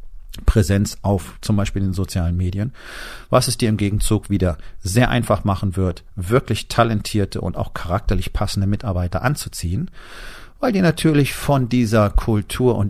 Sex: male